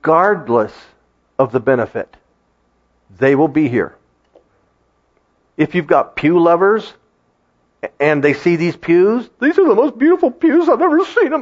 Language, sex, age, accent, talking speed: English, male, 50-69, American, 145 wpm